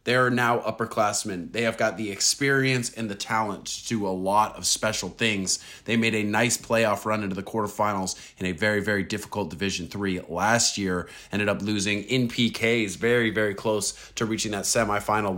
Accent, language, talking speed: American, English, 190 wpm